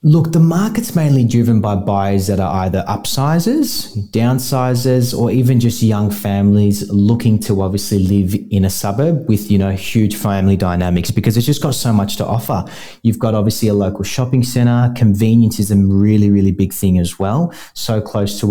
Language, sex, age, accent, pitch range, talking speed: English, male, 30-49, Australian, 100-115 Hz, 185 wpm